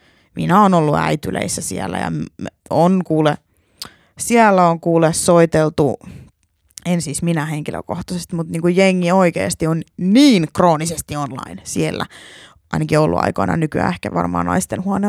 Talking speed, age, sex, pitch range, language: 130 wpm, 20-39, female, 155-210 Hz, Finnish